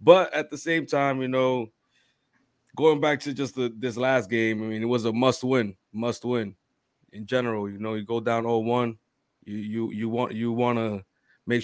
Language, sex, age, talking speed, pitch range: English, male, 20-39, 190 wpm, 115-130 Hz